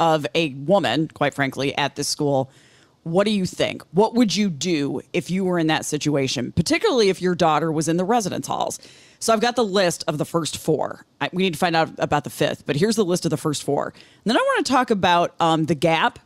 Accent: American